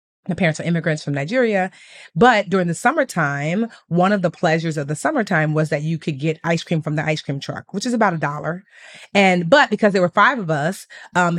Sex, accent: female, American